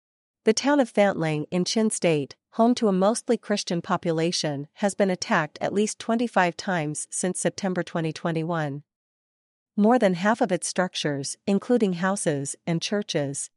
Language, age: English, 40-59